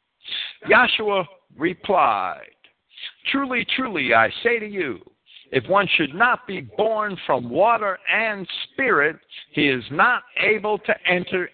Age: 60-79